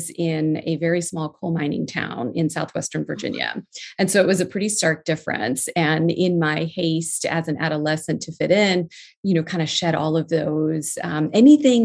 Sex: female